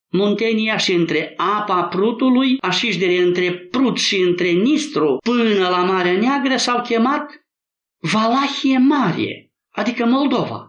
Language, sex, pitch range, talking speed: Romanian, male, 160-230 Hz, 120 wpm